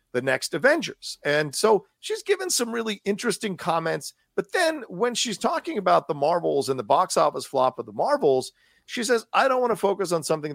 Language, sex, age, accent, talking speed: English, male, 40-59, American, 205 wpm